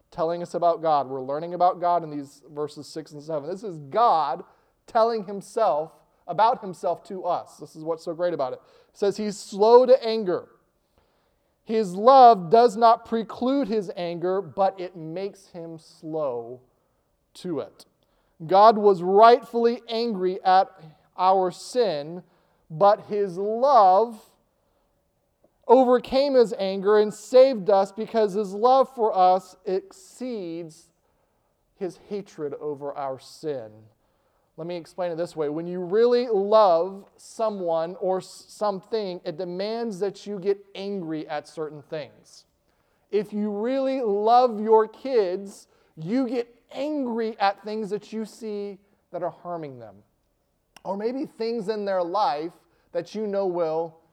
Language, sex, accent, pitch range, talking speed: English, male, American, 170-220 Hz, 140 wpm